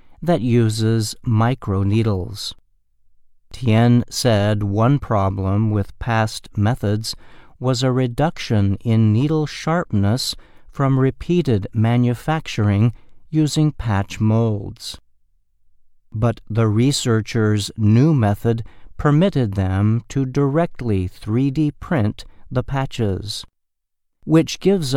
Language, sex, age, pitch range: Chinese, male, 50-69, 100-130 Hz